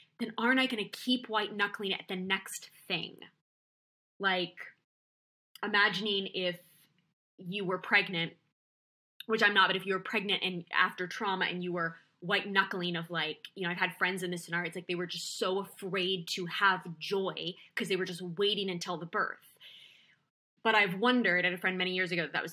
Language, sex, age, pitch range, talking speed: English, female, 20-39, 175-225 Hz, 195 wpm